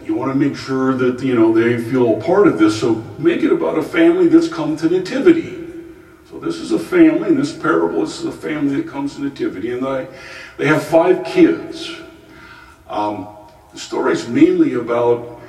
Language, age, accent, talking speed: English, 50-69, American, 200 wpm